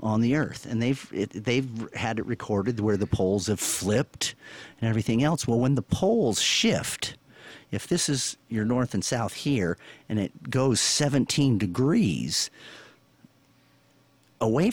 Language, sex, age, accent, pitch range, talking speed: English, male, 50-69, American, 105-145 Hz, 150 wpm